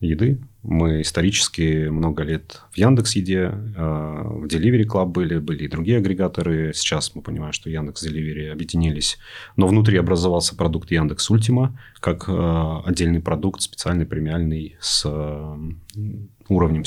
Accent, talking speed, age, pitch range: native, 140 wpm, 30-49, 80-105 Hz